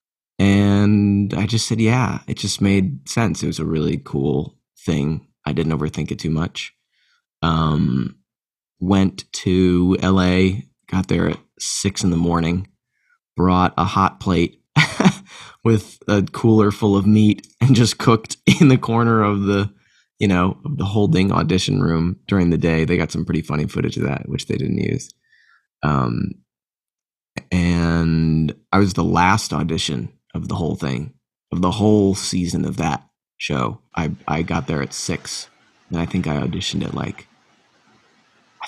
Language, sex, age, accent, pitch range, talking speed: English, male, 20-39, American, 75-100 Hz, 160 wpm